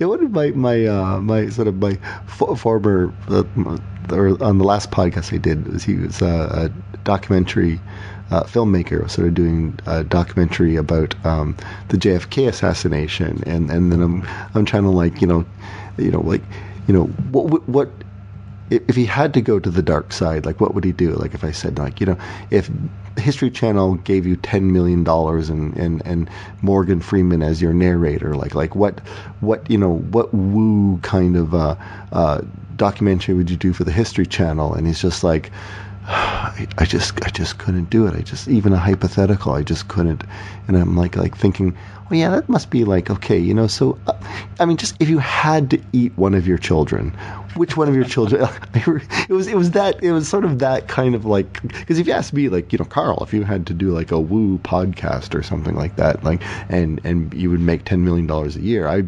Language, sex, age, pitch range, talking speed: English, male, 40-59, 90-105 Hz, 215 wpm